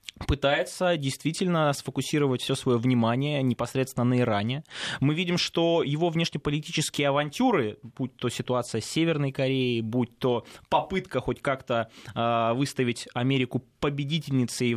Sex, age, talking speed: male, 20-39, 120 wpm